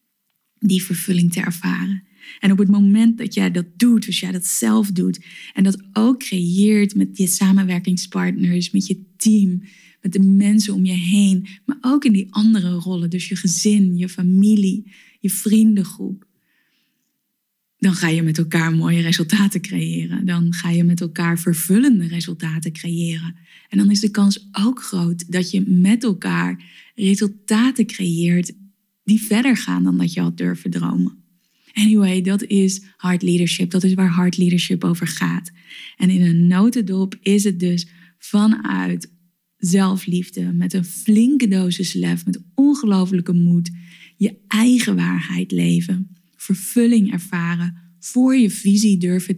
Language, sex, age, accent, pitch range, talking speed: Dutch, female, 20-39, Dutch, 175-205 Hz, 150 wpm